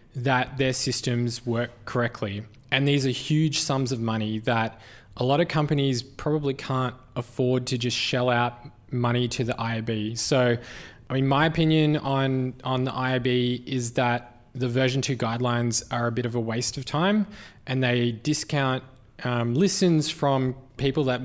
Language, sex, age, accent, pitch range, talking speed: English, male, 20-39, Australian, 120-135 Hz, 165 wpm